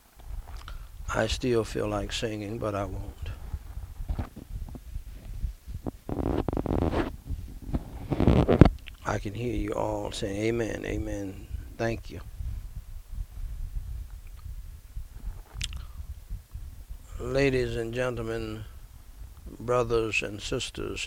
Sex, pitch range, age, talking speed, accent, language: male, 85-115 Hz, 60-79, 70 wpm, American, English